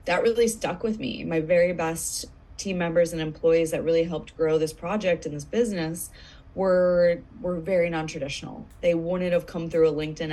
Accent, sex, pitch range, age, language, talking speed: American, female, 165-190 Hz, 20-39, English, 185 wpm